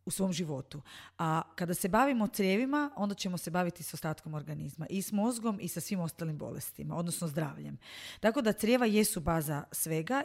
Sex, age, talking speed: female, 30-49, 185 wpm